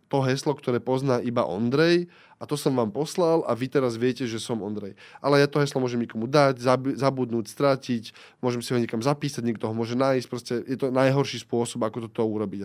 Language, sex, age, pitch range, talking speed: Slovak, male, 20-39, 115-145 Hz, 205 wpm